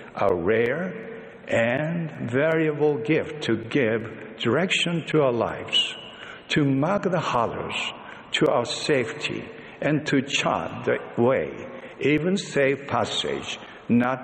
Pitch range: 120-155 Hz